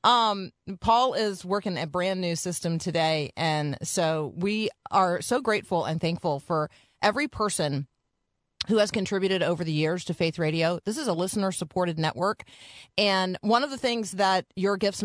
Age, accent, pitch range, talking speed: 30-49, American, 165-205 Hz, 170 wpm